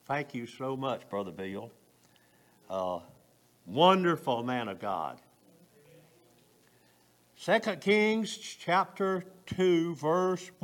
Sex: male